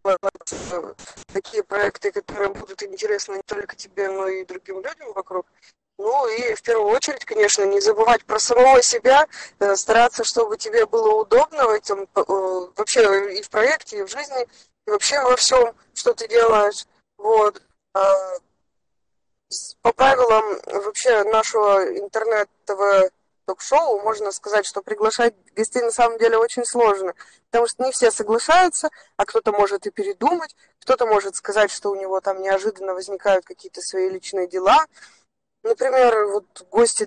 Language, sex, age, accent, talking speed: Russian, female, 20-39, native, 140 wpm